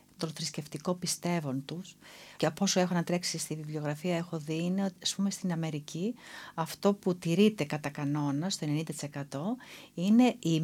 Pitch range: 150-190 Hz